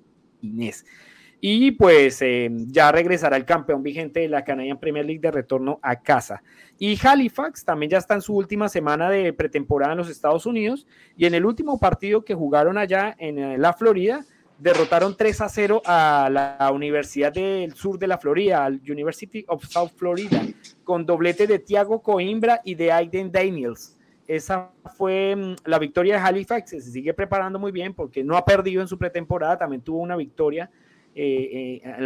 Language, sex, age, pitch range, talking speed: Spanish, male, 30-49, 145-200 Hz, 175 wpm